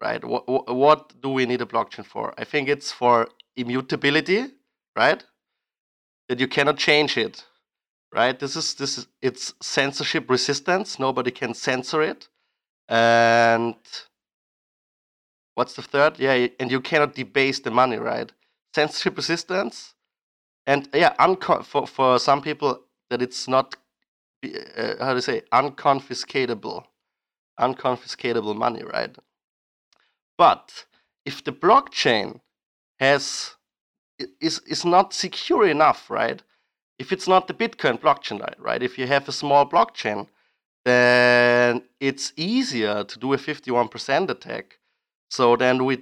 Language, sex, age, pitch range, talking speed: English, male, 30-49, 125-150 Hz, 130 wpm